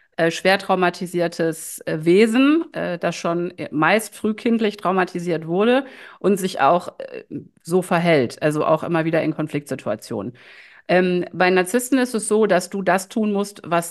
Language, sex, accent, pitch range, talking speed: German, female, German, 165-195 Hz, 140 wpm